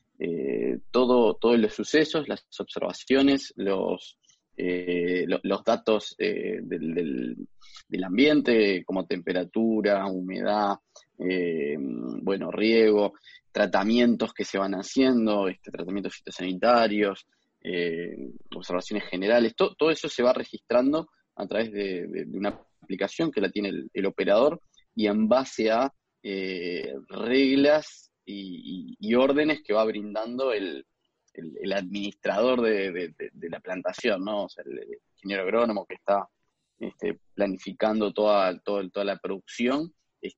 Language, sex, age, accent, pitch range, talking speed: Spanish, male, 20-39, Argentinian, 100-125 Hz, 135 wpm